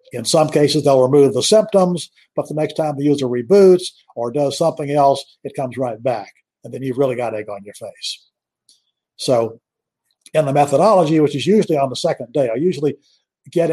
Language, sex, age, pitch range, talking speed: English, male, 50-69, 135-165 Hz, 195 wpm